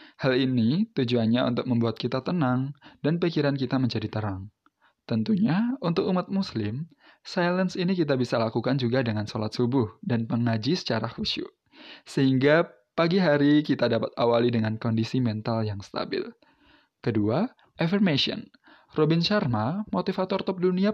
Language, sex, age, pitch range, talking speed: Indonesian, male, 20-39, 115-165 Hz, 135 wpm